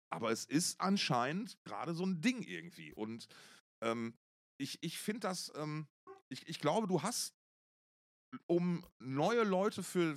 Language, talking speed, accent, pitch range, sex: German, 150 wpm, German, 135-185 Hz, male